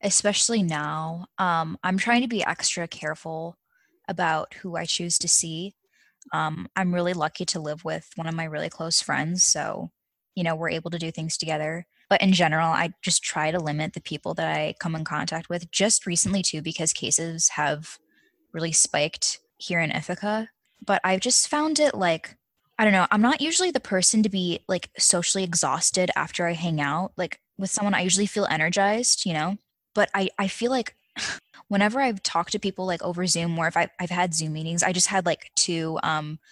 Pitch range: 165-205 Hz